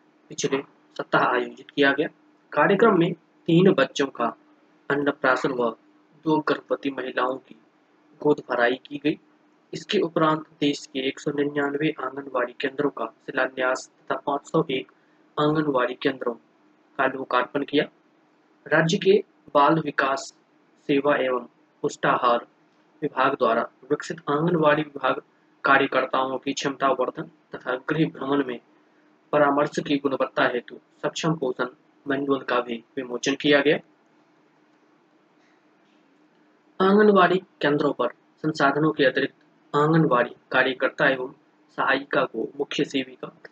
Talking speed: 110 wpm